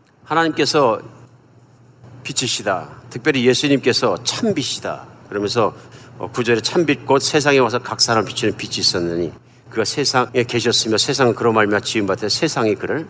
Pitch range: 120-150 Hz